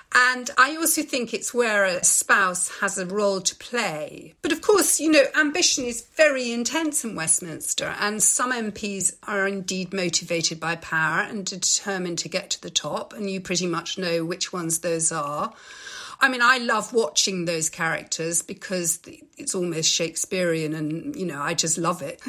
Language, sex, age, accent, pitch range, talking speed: English, female, 50-69, British, 175-240 Hz, 180 wpm